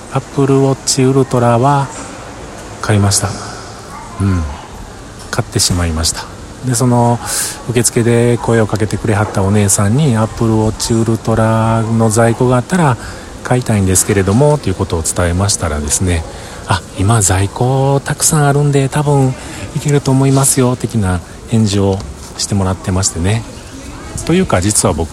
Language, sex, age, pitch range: Japanese, male, 40-59, 90-120 Hz